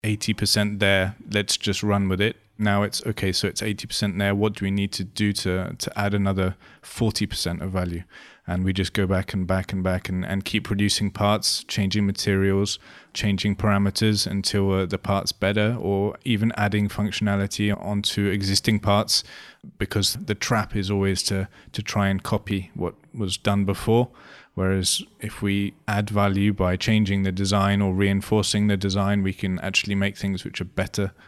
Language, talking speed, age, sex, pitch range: English, 180 wpm, 20-39, male, 100-110 Hz